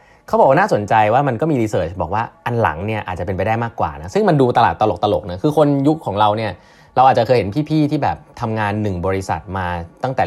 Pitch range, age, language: 95-135 Hz, 20-39, Thai